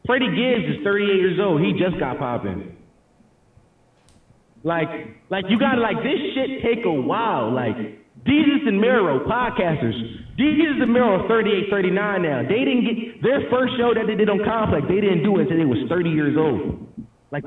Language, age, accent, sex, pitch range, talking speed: English, 20-39, American, male, 165-225 Hz, 185 wpm